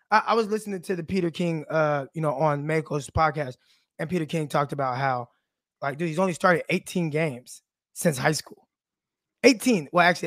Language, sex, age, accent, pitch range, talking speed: English, male, 20-39, American, 150-210 Hz, 185 wpm